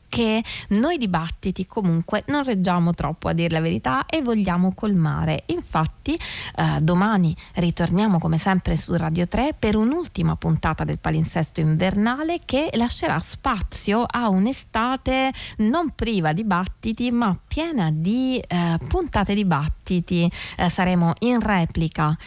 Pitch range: 170-220 Hz